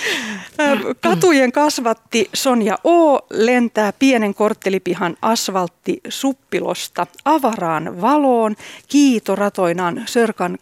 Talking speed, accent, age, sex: 75 wpm, native, 40-59, female